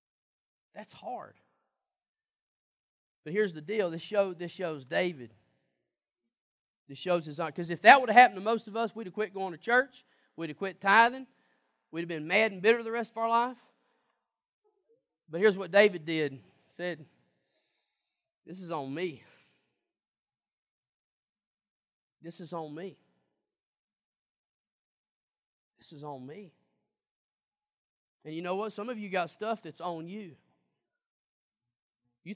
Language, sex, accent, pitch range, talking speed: English, male, American, 165-235 Hz, 140 wpm